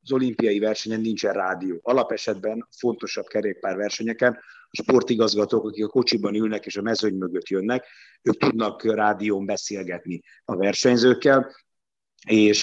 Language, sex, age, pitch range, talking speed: Hungarian, male, 50-69, 100-120 Hz, 125 wpm